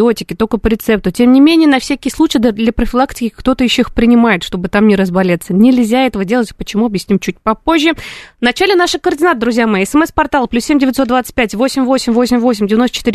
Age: 20-39